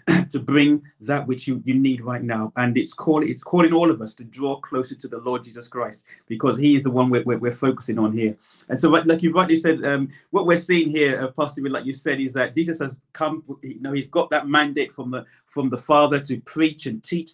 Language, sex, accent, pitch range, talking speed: English, male, British, 130-155 Hz, 250 wpm